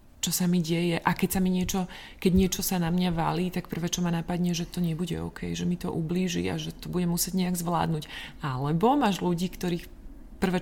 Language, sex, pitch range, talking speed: Slovak, female, 155-180 Hz, 225 wpm